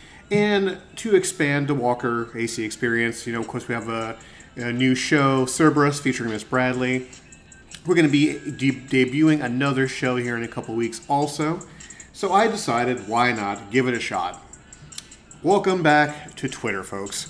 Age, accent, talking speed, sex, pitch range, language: 30-49, American, 165 wpm, male, 110-155 Hz, English